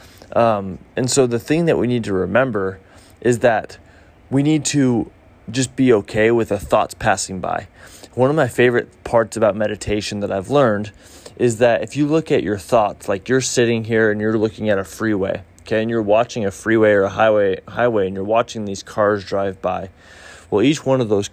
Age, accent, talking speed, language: 20-39, American, 205 wpm, English